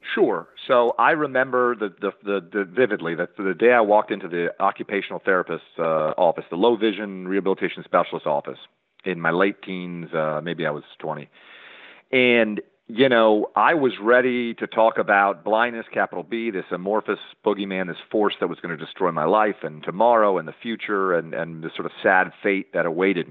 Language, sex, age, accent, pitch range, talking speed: English, male, 40-59, American, 90-125 Hz, 190 wpm